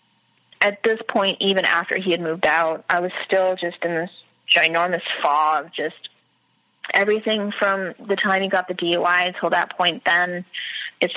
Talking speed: 165 wpm